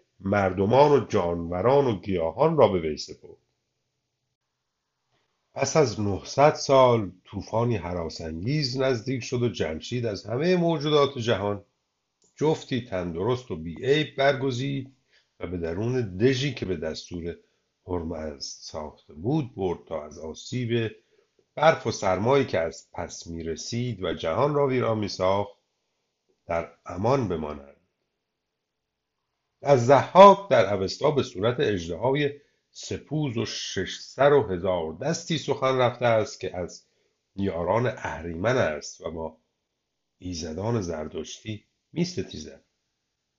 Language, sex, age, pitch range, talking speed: Persian, male, 50-69, 90-140 Hz, 115 wpm